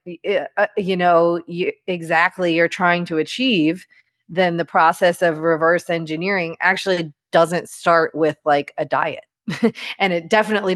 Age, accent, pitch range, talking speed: 30-49, American, 155-185 Hz, 130 wpm